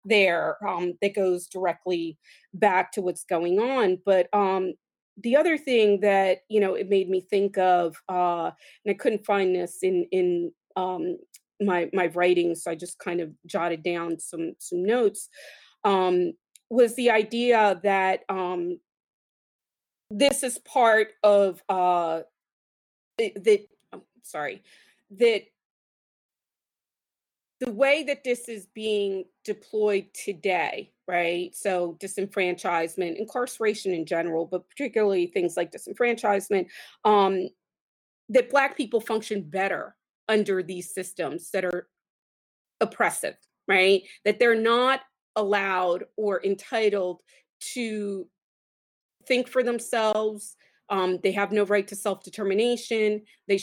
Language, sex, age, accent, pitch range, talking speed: English, female, 30-49, American, 185-225 Hz, 125 wpm